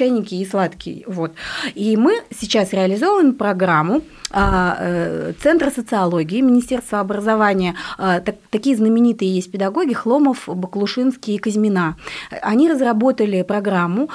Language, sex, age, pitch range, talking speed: Russian, female, 30-49, 185-240 Hz, 95 wpm